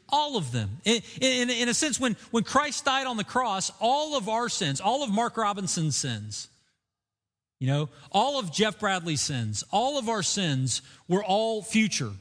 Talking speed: 185 wpm